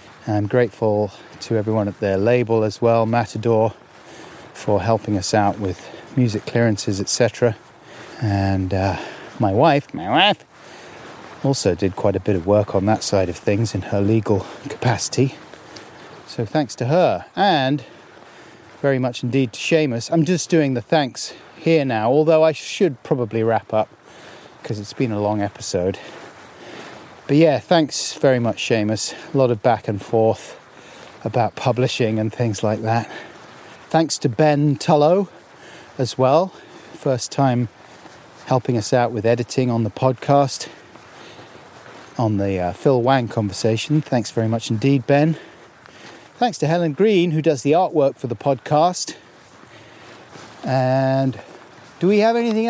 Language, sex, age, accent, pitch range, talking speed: English, male, 30-49, British, 110-150 Hz, 150 wpm